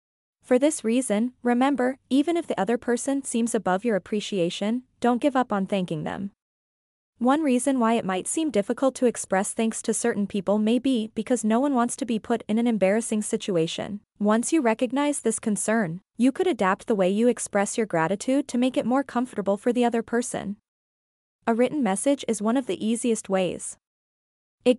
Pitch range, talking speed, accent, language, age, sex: 205-255 Hz, 190 wpm, American, English, 20-39, female